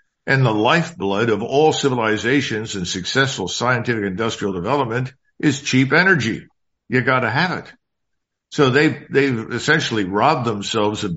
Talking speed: 140 wpm